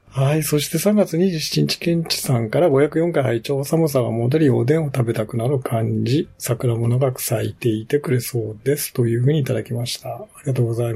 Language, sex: Japanese, male